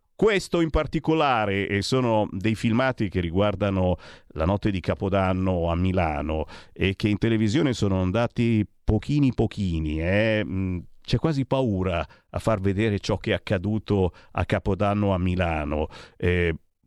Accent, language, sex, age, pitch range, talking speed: native, Italian, male, 50-69, 95-125 Hz, 140 wpm